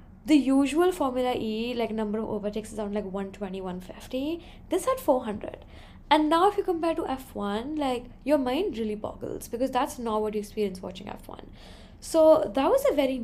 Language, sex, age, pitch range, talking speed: English, female, 10-29, 220-270 Hz, 185 wpm